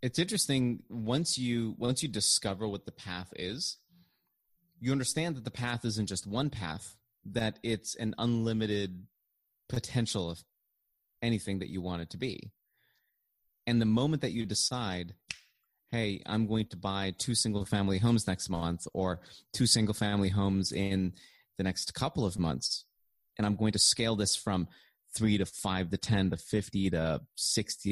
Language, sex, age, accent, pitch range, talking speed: English, male, 30-49, American, 95-120 Hz, 160 wpm